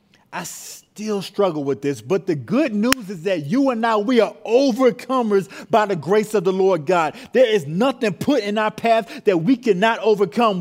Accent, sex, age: American, male, 30-49